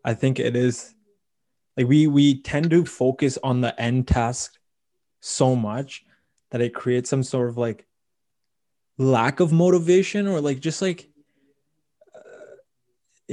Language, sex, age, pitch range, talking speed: English, male, 20-39, 115-145 Hz, 140 wpm